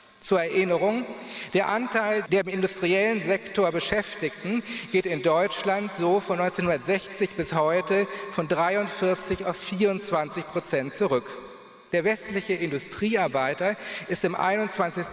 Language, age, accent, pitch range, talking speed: German, 40-59, German, 165-200 Hz, 115 wpm